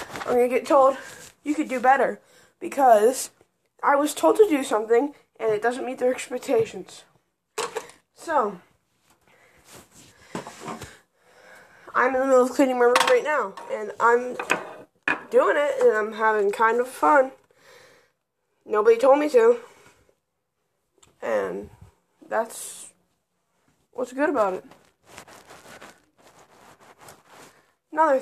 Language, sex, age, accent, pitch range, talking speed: English, female, 20-39, American, 235-320 Hz, 115 wpm